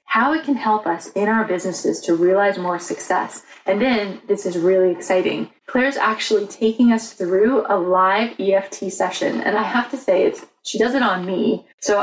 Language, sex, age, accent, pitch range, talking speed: English, female, 20-39, American, 185-240 Hz, 195 wpm